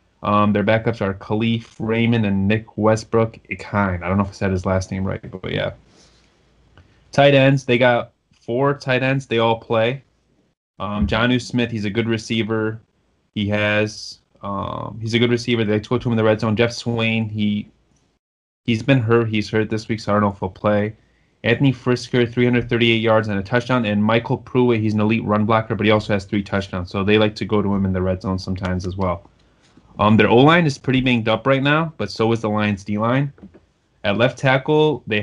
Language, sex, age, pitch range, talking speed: English, male, 20-39, 105-120 Hz, 215 wpm